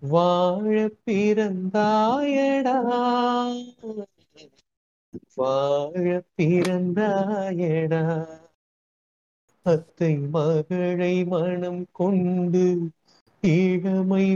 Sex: male